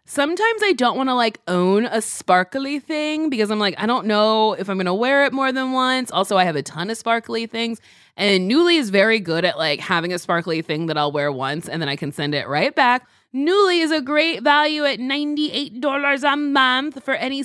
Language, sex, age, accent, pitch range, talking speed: English, female, 20-39, American, 220-300 Hz, 230 wpm